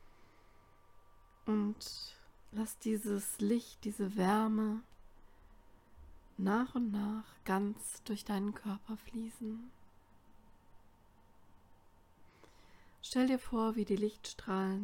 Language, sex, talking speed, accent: German, female, 80 wpm, German